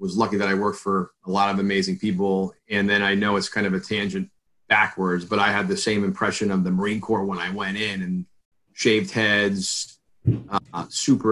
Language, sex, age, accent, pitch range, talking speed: English, male, 30-49, American, 95-105 Hz, 210 wpm